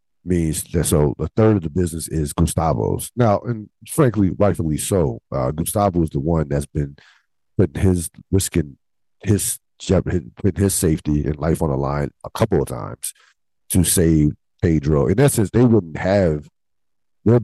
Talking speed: 160 wpm